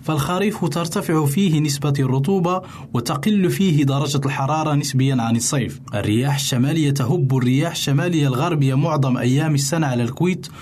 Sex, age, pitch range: male, 20-39, 125-155 Hz